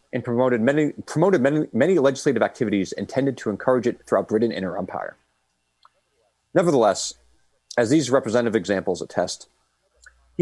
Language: English